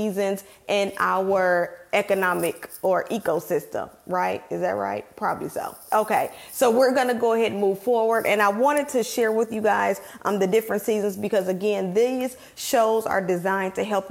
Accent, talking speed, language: American, 185 wpm, English